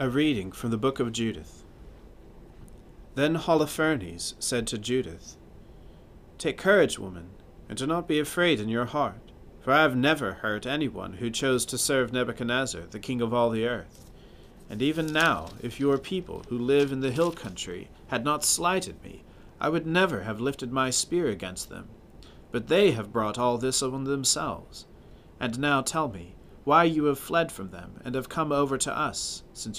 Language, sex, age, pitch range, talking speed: English, male, 40-59, 105-145 Hz, 180 wpm